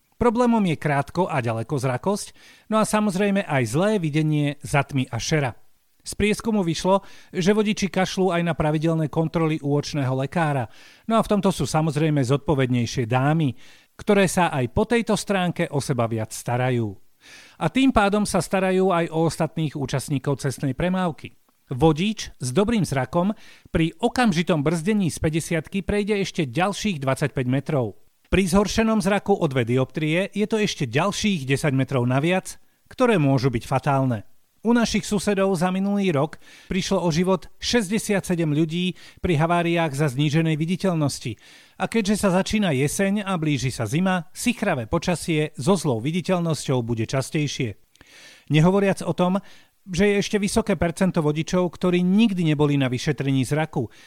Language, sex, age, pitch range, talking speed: Slovak, male, 40-59, 140-195 Hz, 150 wpm